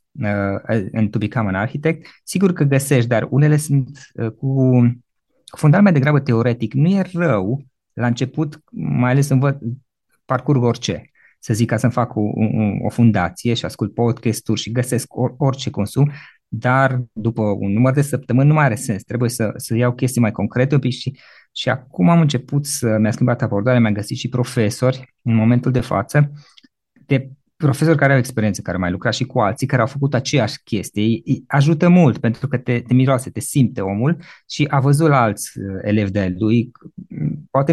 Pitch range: 110-140 Hz